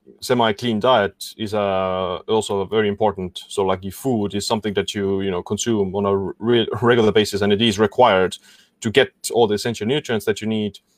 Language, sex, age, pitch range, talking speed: English, male, 20-39, 95-110 Hz, 190 wpm